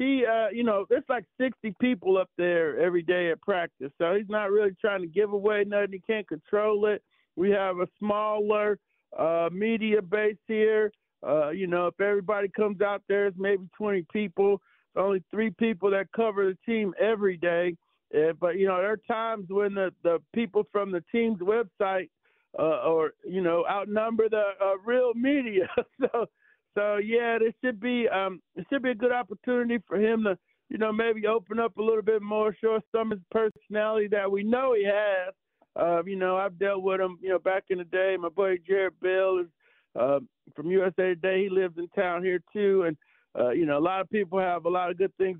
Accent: American